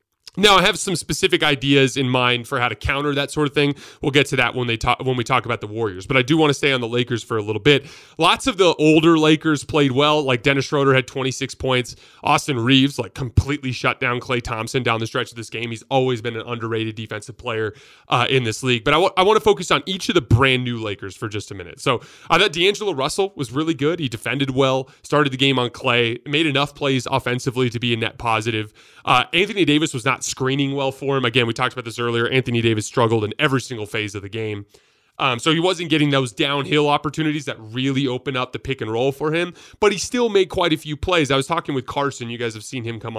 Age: 30-49